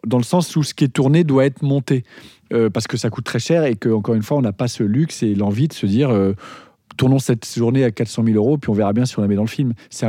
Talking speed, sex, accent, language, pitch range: 310 wpm, male, French, French, 115-145 Hz